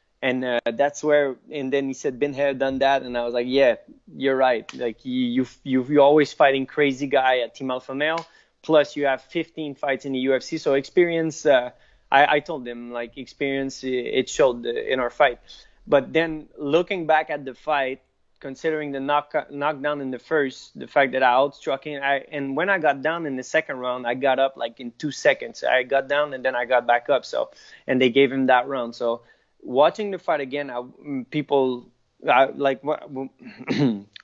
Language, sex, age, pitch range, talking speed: English, male, 20-39, 125-150 Hz, 205 wpm